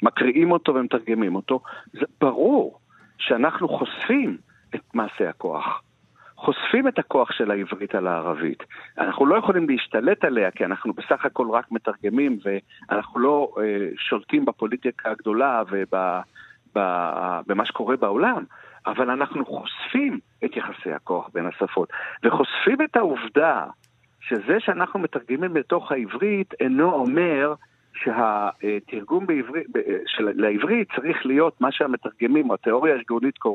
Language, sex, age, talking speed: Hebrew, male, 50-69, 115 wpm